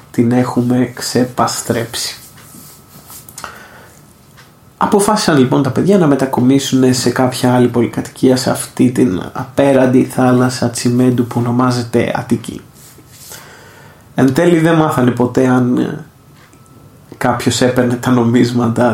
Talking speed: 100 wpm